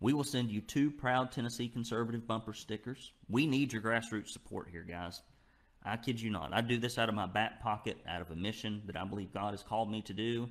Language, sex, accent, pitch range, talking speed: English, male, American, 100-120 Hz, 240 wpm